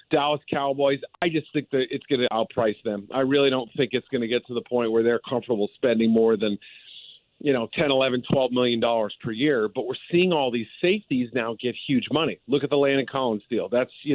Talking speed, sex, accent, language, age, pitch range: 240 wpm, male, American, English, 40-59, 130-165 Hz